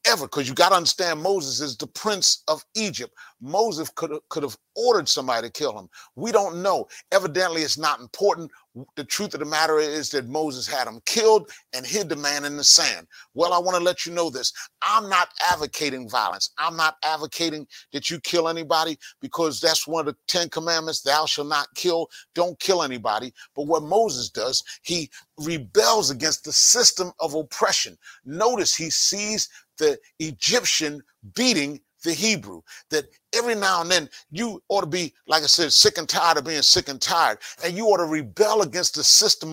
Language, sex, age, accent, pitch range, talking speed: English, male, 40-59, American, 155-195 Hz, 190 wpm